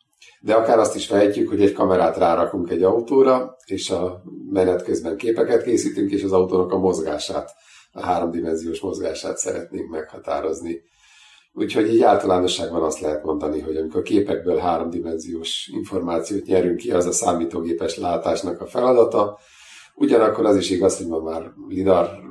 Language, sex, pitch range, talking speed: Hungarian, male, 80-95 Hz, 150 wpm